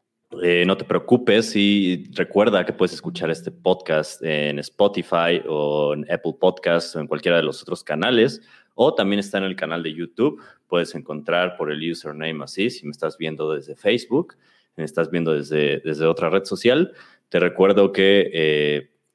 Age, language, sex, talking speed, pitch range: 30-49, Spanish, male, 180 wpm, 75-90 Hz